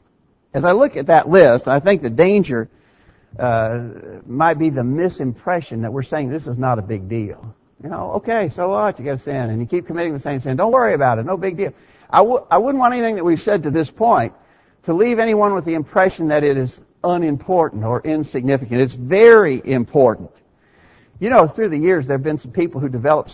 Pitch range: 115-165 Hz